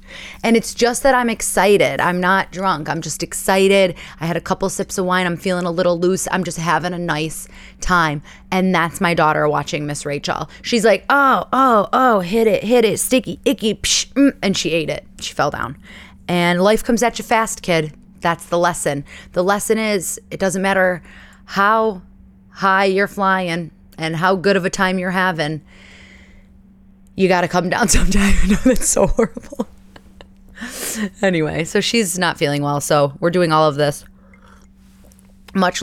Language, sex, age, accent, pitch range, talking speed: English, female, 30-49, American, 155-195 Hz, 180 wpm